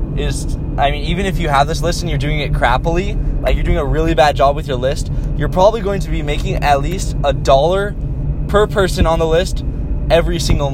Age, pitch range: 10-29, 135-155 Hz